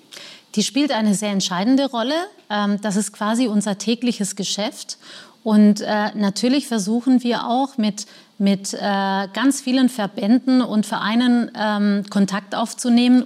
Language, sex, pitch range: German, female, 200-230 Hz